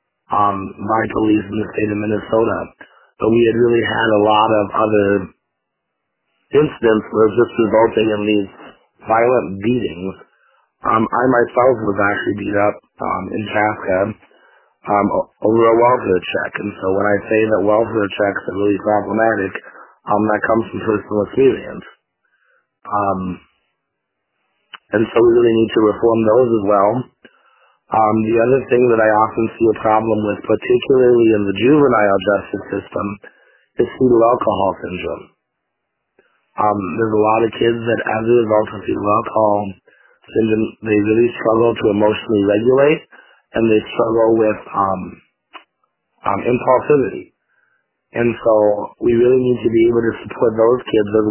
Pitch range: 105-115 Hz